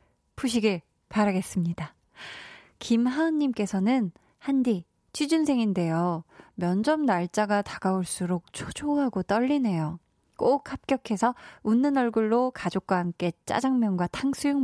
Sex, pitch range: female, 190-265 Hz